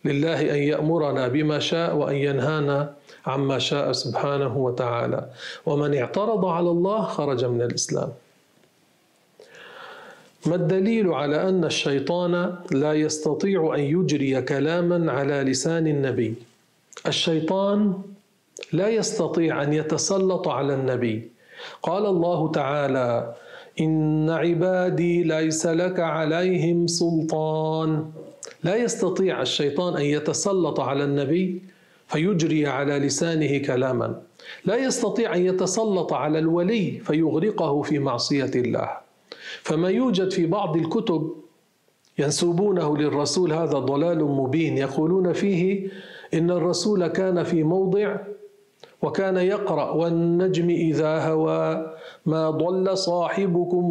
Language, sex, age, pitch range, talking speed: Arabic, male, 40-59, 145-180 Hz, 105 wpm